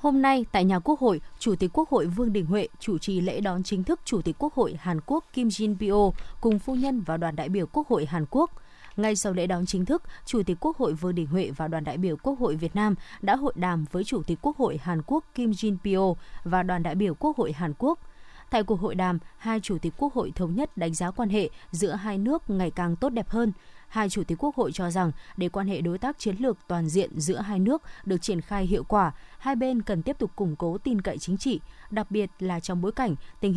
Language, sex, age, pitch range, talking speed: Vietnamese, female, 20-39, 180-230 Hz, 260 wpm